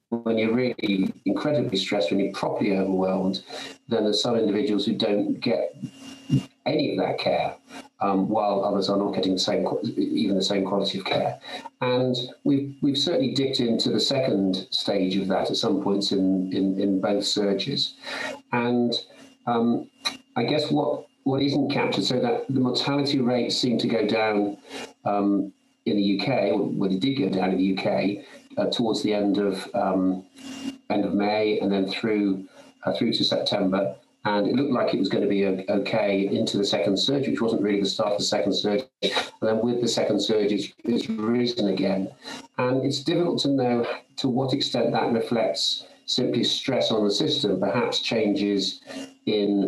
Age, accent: 40-59, British